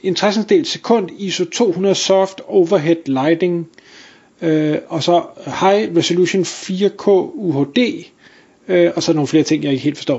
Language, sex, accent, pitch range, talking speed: Danish, male, native, 160-200 Hz, 145 wpm